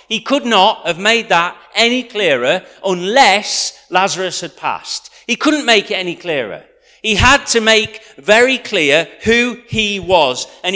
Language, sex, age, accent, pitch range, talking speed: English, male, 40-59, British, 145-230 Hz, 155 wpm